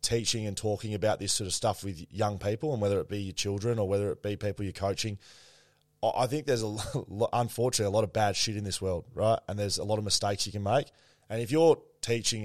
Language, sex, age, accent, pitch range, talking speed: English, male, 20-39, Australian, 100-115 Hz, 250 wpm